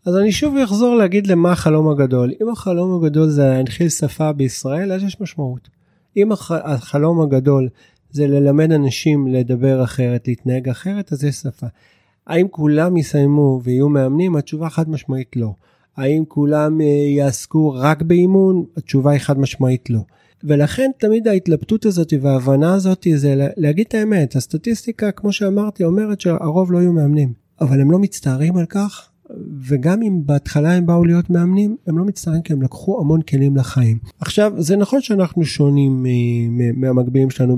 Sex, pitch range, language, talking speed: male, 130-175 Hz, Hebrew, 155 wpm